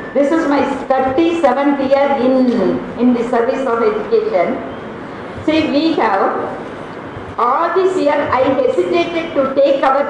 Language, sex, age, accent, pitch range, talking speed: Tamil, female, 50-69, native, 245-310 Hz, 130 wpm